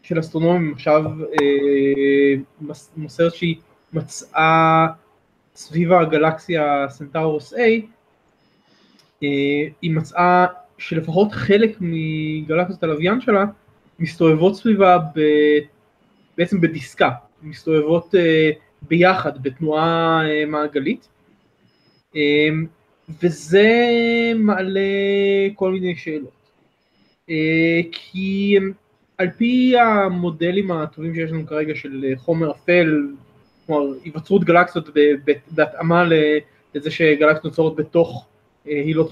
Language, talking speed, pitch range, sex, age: Hebrew, 85 wpm, 150-180 Hz, male, 20-39